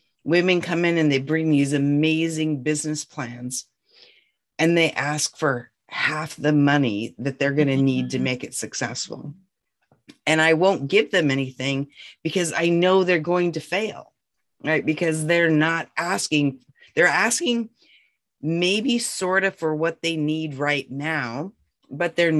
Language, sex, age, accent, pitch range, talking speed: English, female, 40-59, American, 135-170 Hz, 155 wpm